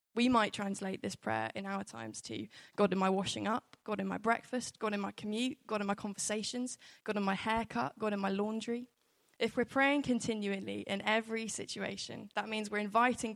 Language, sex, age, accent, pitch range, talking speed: English, female, 10-29, British, 195-225 Hz, 200 wpm